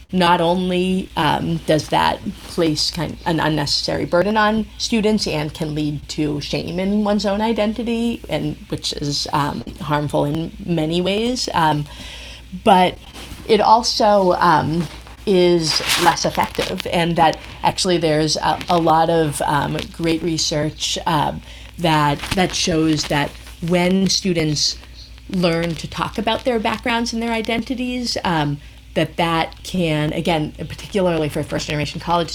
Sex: female